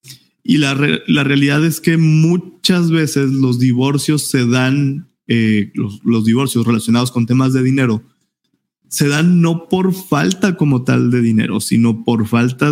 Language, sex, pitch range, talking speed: Spanish, male, 120-145 Hz, 160 wpm